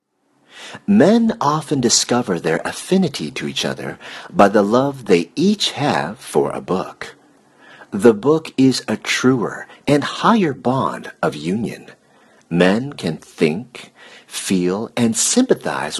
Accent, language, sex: American, Chinese, male